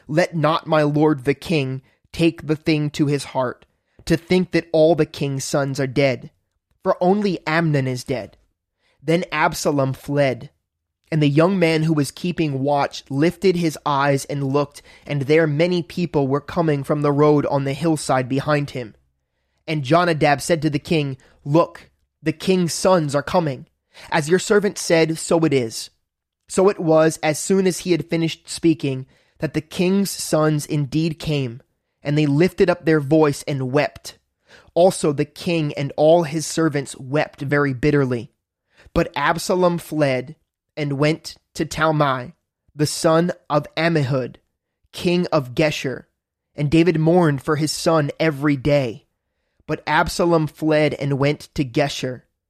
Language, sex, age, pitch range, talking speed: English, male, 20-39, 140-165 Hz, 160 wpm